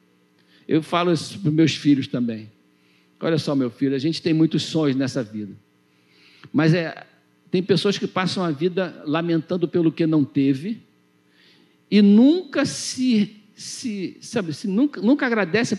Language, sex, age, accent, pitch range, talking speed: Portuguese, male, 60-79, Brazilian, 145-230 Hz, 155 wpm